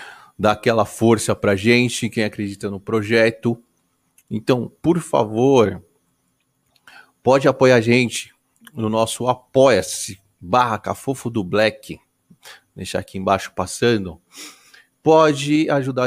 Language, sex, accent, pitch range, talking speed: Portuguese, male, Brazilian, 100-120 Hz, 110 wpm